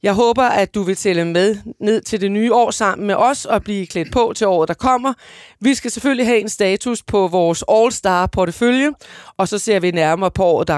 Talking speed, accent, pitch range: 235 wpm, native, 175-235 Hz